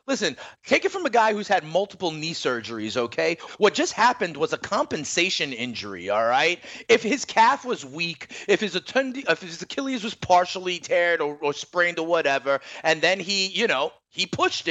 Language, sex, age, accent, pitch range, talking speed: English, male, 30-49, American, 135-180 Hz, 190 wpm